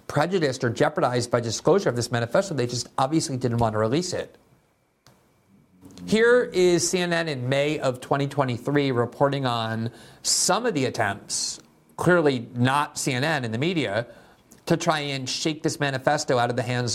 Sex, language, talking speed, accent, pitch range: male, English, 160 wpm, American, 125-155 Hz